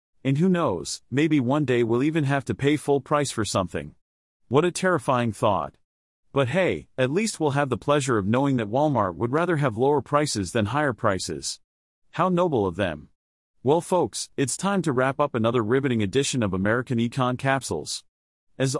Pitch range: 110-155 Hz